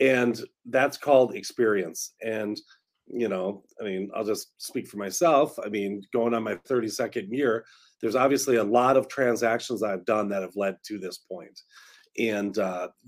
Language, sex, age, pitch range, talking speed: English, male, 40-59, 115-135 Hz, 170 wpm